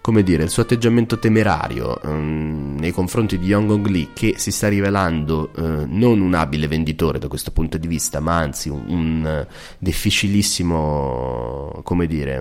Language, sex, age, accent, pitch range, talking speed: Italian, male, 30-49, native, 75-90 Hz, 160 wpm